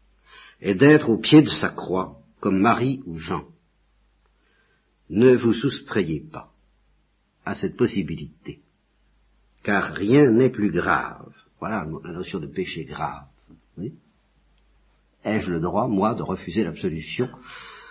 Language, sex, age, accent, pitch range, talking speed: French, male, 50-69, French, 95-120 Hz, 125 wpm